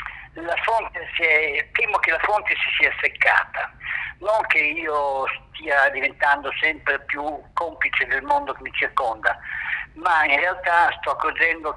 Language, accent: Italian, native